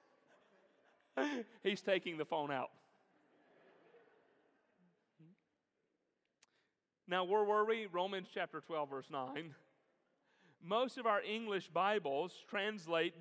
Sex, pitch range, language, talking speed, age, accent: male, 185-255 Hz, English, 90 wpm, 40-59, American